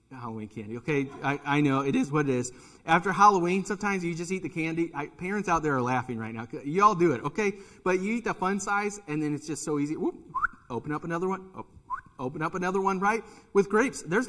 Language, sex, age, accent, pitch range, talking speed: English, male, 30-49, American, 140-215 Hz, 255 wpm